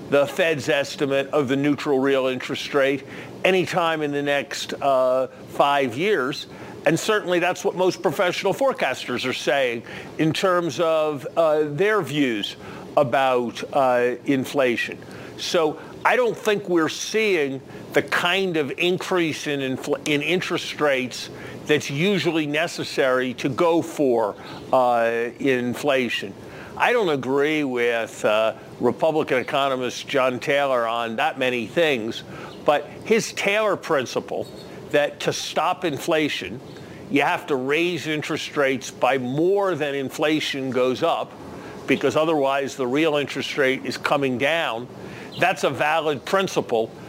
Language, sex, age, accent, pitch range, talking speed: English, male, 50-69, American, 130-170 Hz, 130 wpm